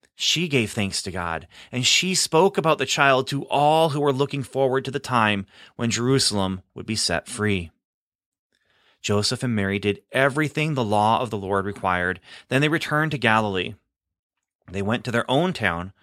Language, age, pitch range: English, 30-49, 100-150 Hz